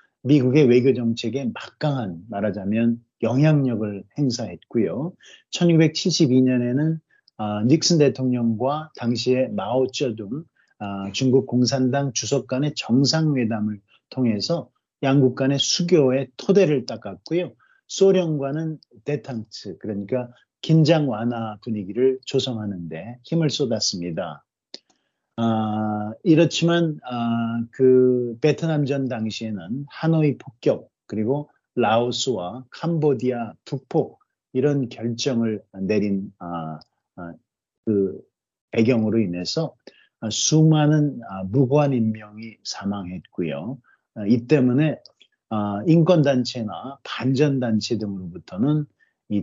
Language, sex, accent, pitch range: Korean, male, native, 110-145 Hz